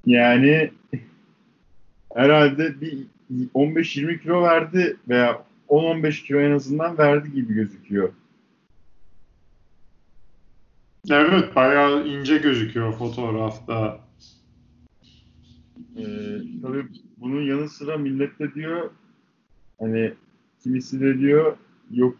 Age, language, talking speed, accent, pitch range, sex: 50-69, Turkish, 85 wpm, native, 115-160 Hz, male